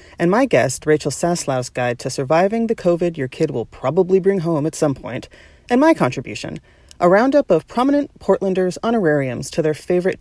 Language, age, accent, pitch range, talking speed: English, 30-49, American, 140-205 Hz, 180 wpm